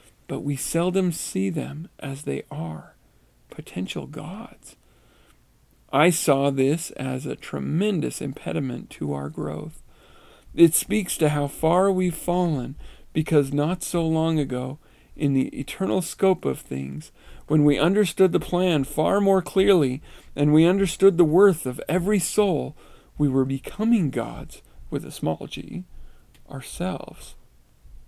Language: English